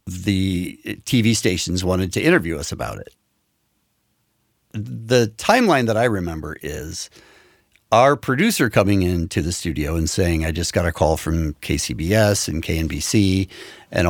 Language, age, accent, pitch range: English, 60-79, American, 90-125 Hz